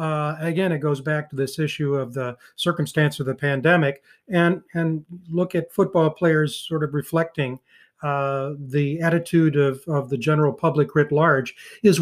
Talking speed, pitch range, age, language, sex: 170 wpm, 145-175 Hz, 40-59, English, male